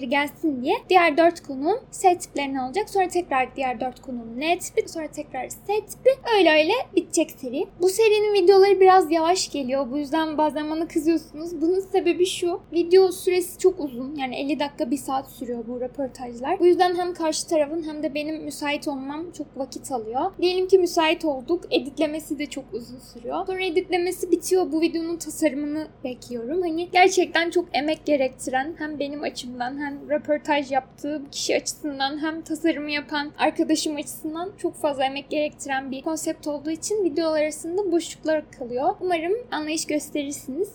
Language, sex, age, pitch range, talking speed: Turkish, female, 10-29, 290-360 Hz, 160 wpm